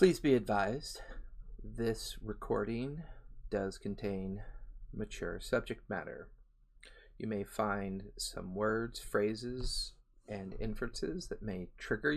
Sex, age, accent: male, 40-59, American